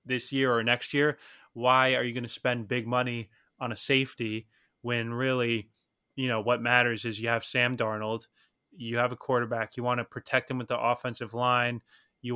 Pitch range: 115-130 Hz